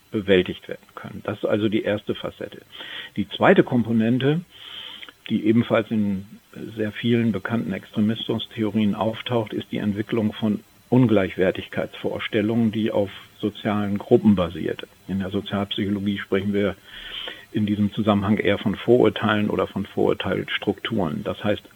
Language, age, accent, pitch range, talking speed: German, 50-69, German, 100-120 Hz, 125 wpm